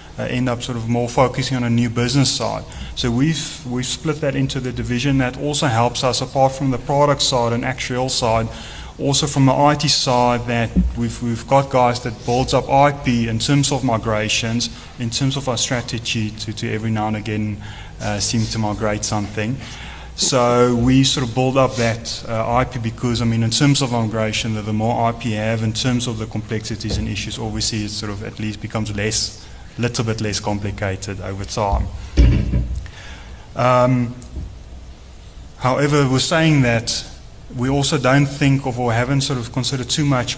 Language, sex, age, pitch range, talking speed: English, male, 20-39, 110-130 Hz, 185 wpm